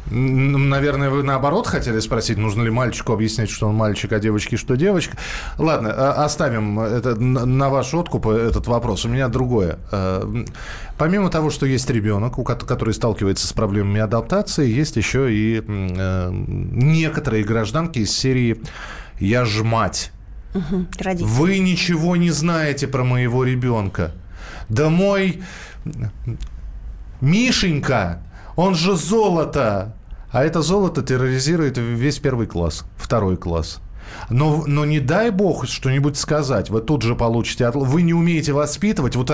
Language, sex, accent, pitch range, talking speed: Russian, male, native, 110-155 Hz, 130 wpm